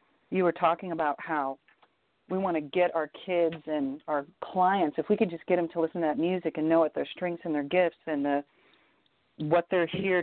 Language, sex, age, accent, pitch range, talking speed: English, female, 40-59, American, 160-185 Hz, 225 wpm